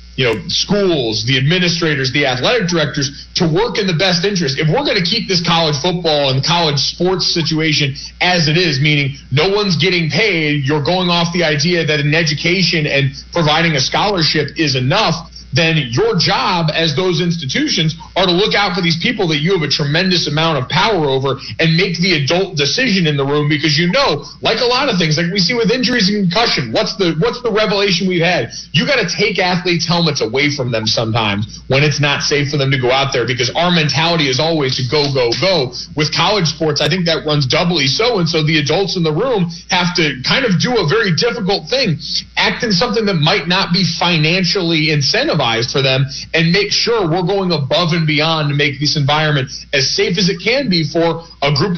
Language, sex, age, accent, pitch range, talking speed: English, male, 40-59, American, 145-180 Hz, 215 wpm